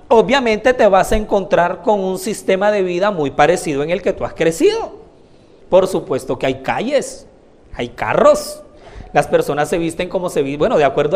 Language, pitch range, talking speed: Spanish, 135-210 Hz, 190 wpm